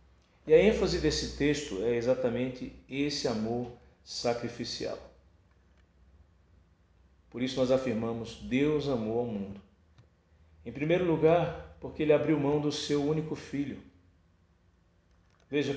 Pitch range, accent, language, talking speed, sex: 95-145 Hz, Brazilian, Portuguese, 115 wpm, male